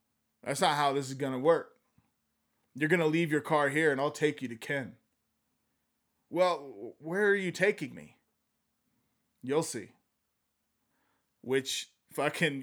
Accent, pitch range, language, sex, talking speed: American, 125-170 Hz, English, male, 140 wpm